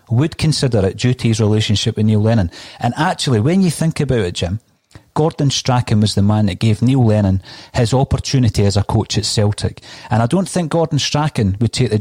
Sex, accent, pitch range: male, British, 110-145 Hz